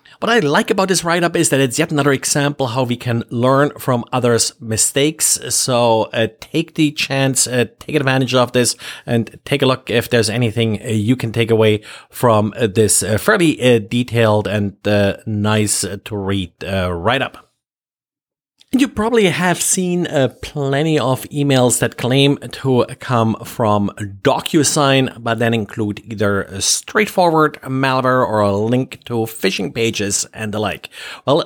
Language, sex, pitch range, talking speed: English, male, 110-145 Hz, 160 wpm